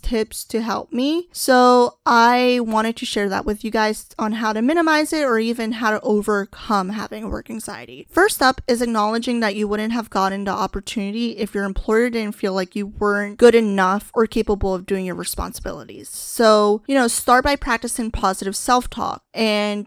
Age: 10-29